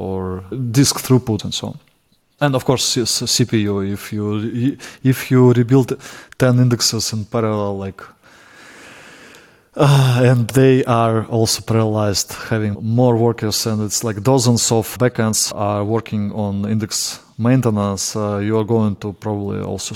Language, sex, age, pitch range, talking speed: English, male, 20-39, 110-130 Hz, 145 wpm